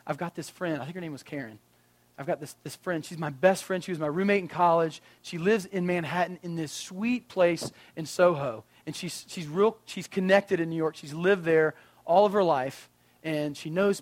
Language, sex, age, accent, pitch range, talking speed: English, male, 40-59, American, 160-195 Hz, 230 wpm